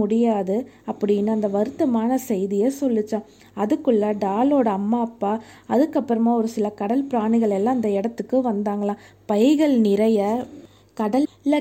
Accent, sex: native, female